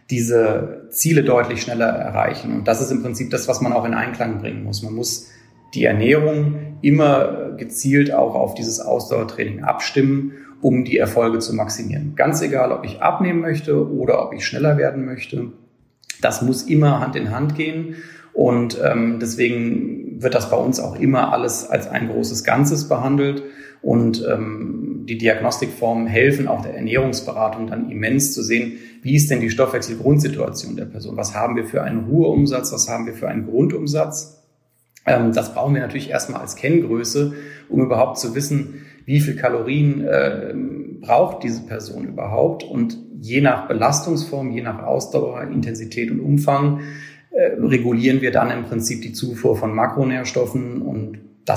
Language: German